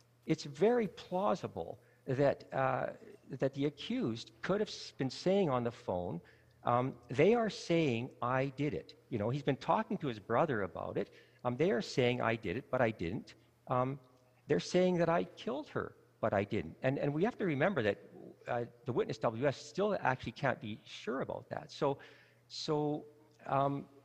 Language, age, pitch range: English, 50-69, 115-150 Hz